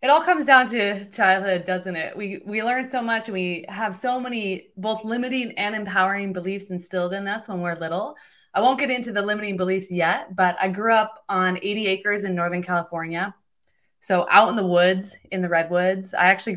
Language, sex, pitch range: English, female, 180-225 Hz